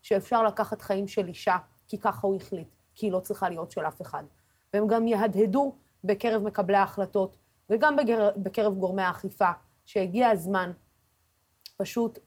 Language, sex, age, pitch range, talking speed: Hebrew, female, 30-49, 185-220 Hz, 145 wpm